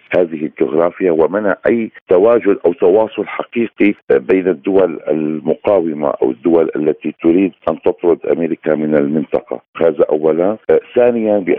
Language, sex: Arabic, male